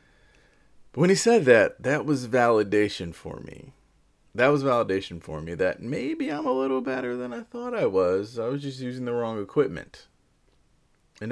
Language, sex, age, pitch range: English, male, 30-49, 95-140 Hz